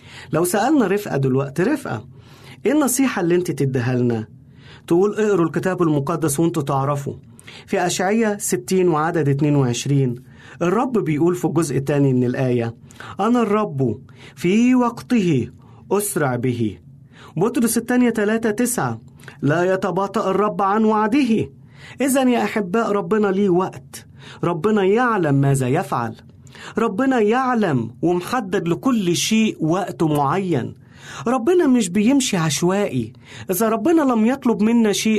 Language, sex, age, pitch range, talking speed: Arabic, male, 40-59, 135-210 Hz, 125 wpm